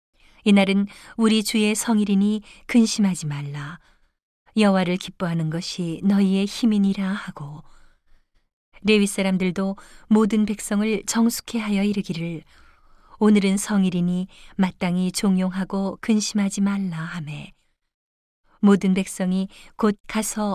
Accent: native